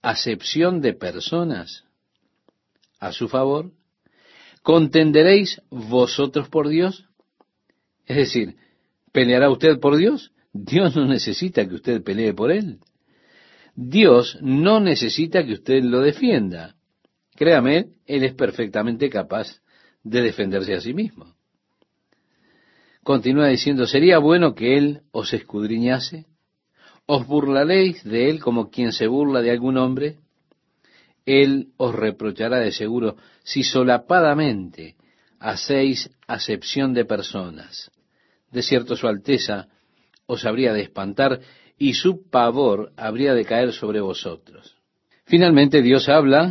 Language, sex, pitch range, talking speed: Spanish, male, 120-160 Hz, 115 wpm